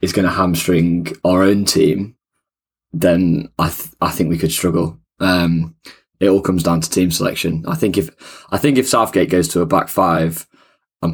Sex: male